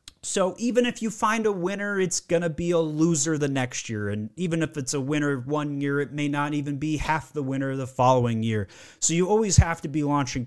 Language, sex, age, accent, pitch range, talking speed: English, male, 30-49, American, 140-185 Hz, 250 wpm